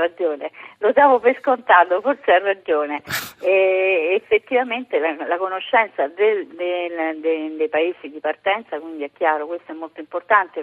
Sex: female